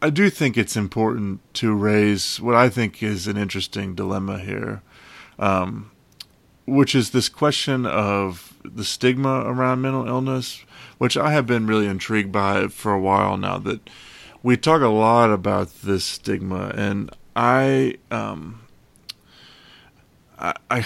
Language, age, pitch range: English, 30-49, 100-120 Hz